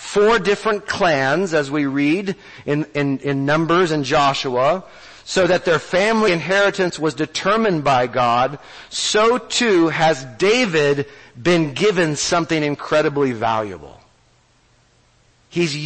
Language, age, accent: English, 40-59, American